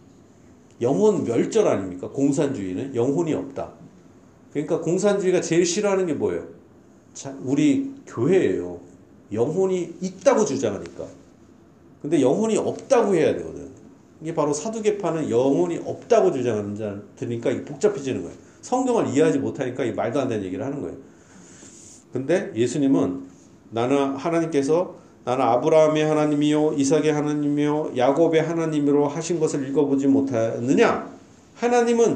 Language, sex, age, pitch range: Korean, male, 40-59, 135-205 Hz